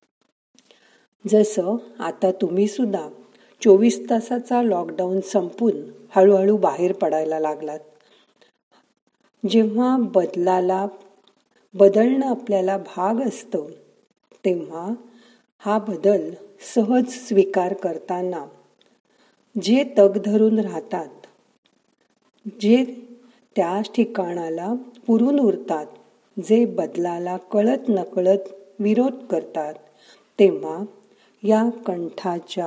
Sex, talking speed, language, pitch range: female, 75 wpm, Marathi, 185-225 Hz